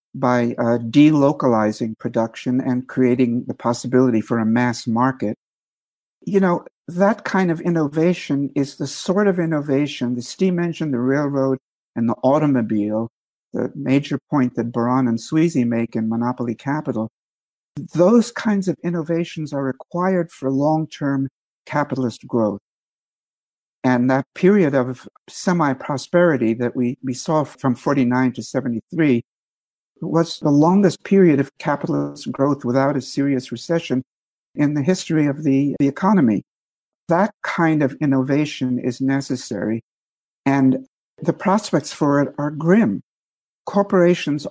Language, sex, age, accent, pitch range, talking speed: English, male, 60-79, American, 125-155 Hz, 130 wpm